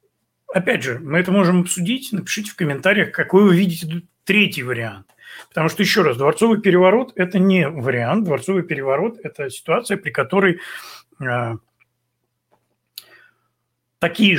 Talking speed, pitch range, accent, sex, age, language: 125 wpm, 125-175 Hz, native, male, 30-49, Russian